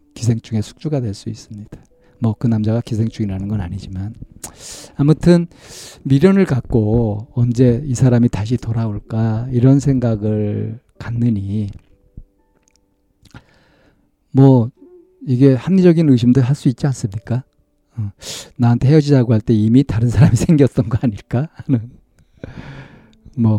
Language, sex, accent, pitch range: Korean, male, native, 110-135 Hz